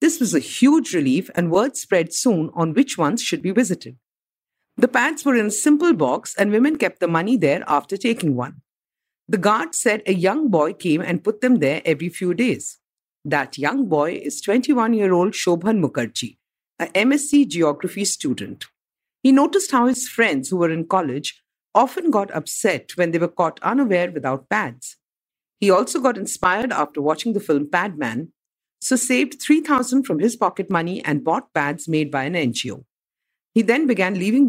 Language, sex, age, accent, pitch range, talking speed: English, female, 50-69, Indian, 165-255 Hz, 175 wpm